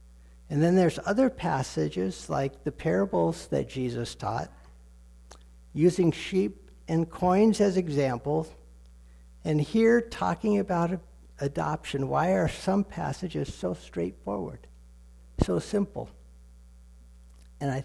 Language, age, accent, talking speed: English, 60-79, American, 110 wpm